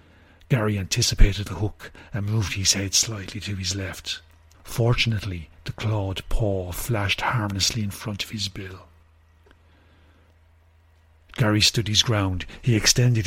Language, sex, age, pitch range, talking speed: English, male, 40-59, 85-110 Hz, 130 wpm